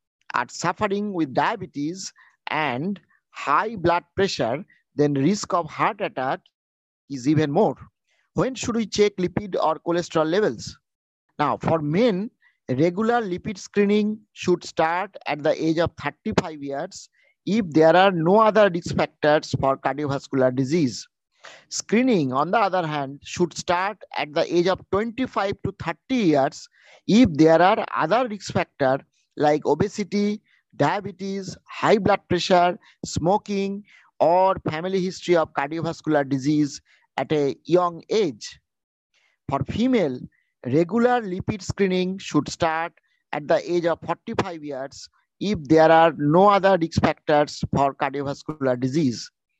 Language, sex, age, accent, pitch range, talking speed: English, male, 50-69, Indian, 150-200 Hz, 130 wpm